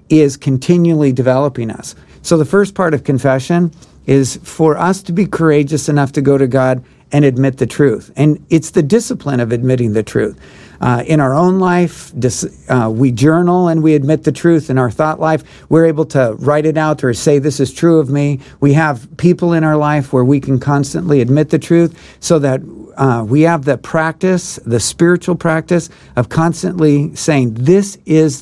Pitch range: 135-170 Hz